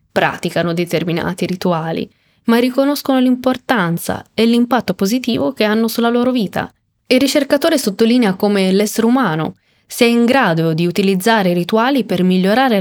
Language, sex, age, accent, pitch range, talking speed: Italian, female, 20-39, native, 190-245 Hz, 135 wpm